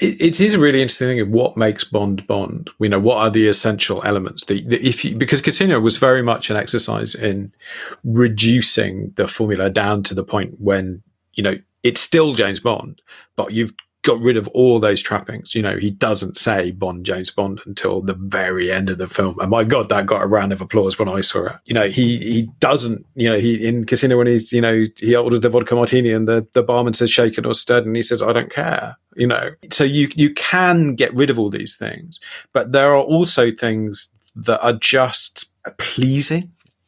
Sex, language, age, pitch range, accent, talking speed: male, English, 40-59, 105-125 Hz, British, 215 wpm